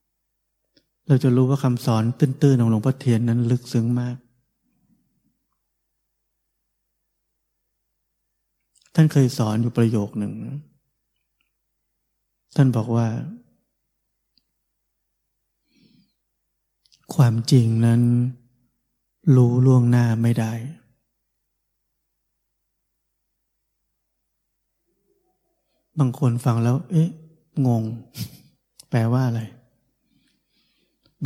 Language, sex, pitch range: Thai, male, 115-140 Hz